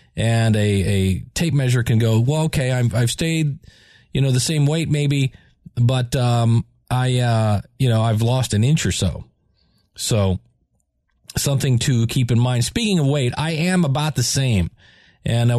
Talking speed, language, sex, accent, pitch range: 180 wpm, English, male, American, 115-140 Hz